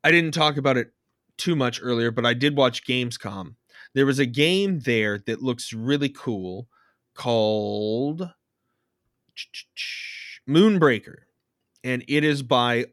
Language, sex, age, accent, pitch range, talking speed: English, male, 20-39, American, 115-155 Hz, 130 wpm